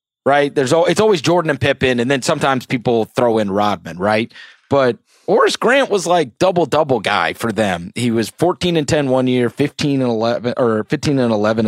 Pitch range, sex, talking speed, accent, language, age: 110-160 Hz, male, 200 wpm, American, English, 30-49